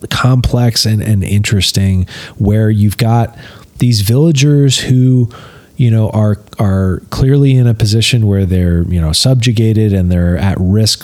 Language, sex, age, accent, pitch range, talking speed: English, male, 30-49, American, 95-115 Hz, 145 wpm